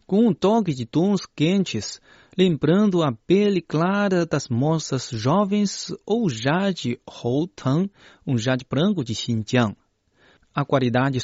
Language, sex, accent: Chinese, male, Brazilian